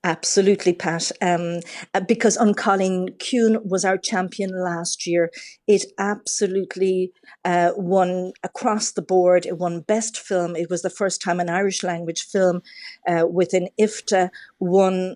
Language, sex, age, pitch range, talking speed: English, female, 50-69, 175-205 Hz, 140 wpm